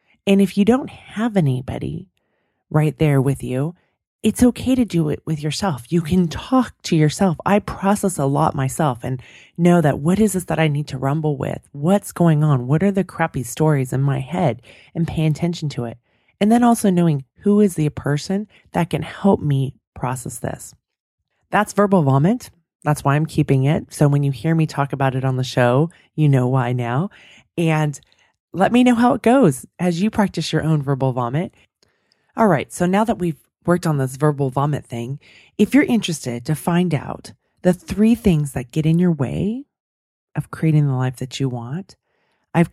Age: 30-49